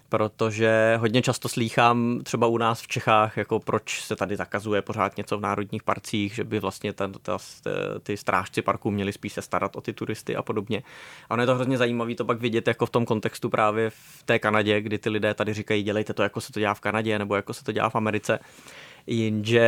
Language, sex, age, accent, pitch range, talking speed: Czech, male, 20-39, native, 105-115 Hz, 225 wpm